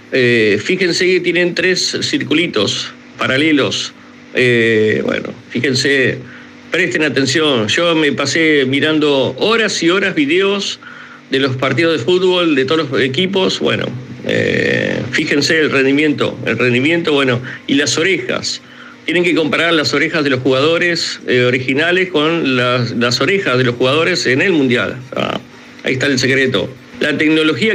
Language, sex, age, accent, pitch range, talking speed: Spanish, male, 50-69, Argentinian, 140-185 Hz, 145 wpm